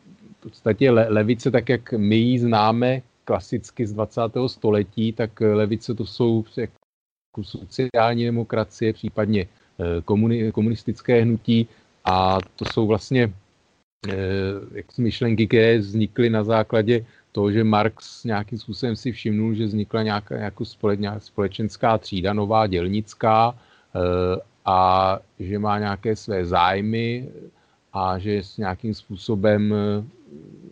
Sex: male